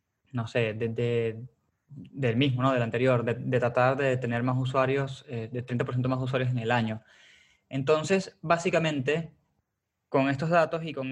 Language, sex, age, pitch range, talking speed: Spanish, male, 20-39, 120-140 Hz, 165 wpm